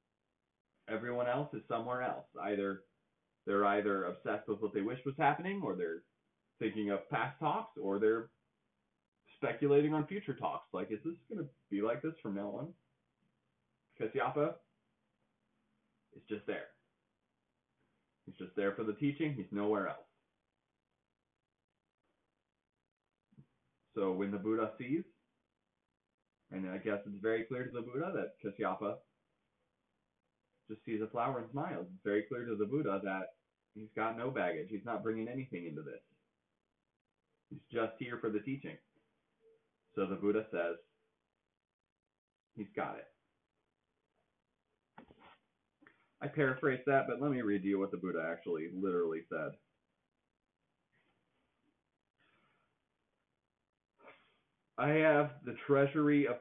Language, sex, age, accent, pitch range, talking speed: English, male, 30-49, American, 100-140 Hz, 130 wpm